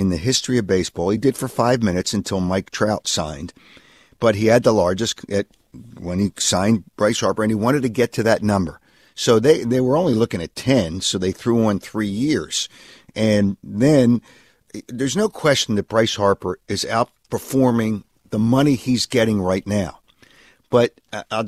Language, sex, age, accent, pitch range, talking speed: English, male, 50-69, American, 95-125 Hz, 180 wpm